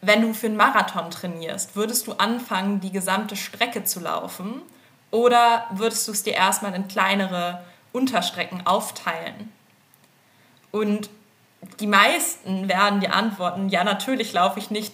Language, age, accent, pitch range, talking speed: German, 20-39, German, 180-220 Hz, 140 wpm